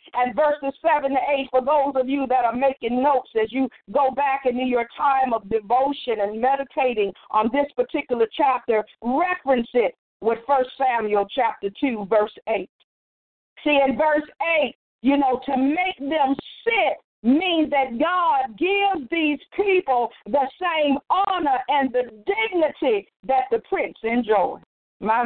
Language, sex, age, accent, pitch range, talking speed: English, female, 50-69, American, 230-295 Hz, 150 wpm